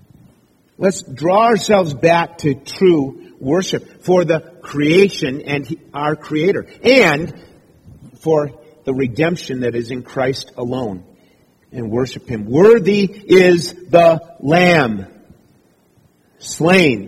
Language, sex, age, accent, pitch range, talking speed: English, male, 50-69, American, 135-175 Hz, 105 wpm